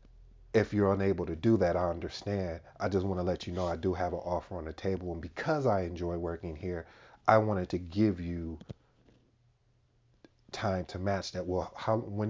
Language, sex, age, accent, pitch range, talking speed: English, male, 40-59, American, 90-110 Hz, 200 wpm